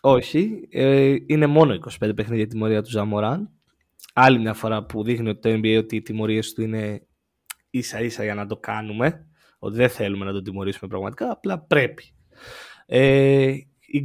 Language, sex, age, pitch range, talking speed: Greek, male, 20-39, 110-135 Hz, 175 wpm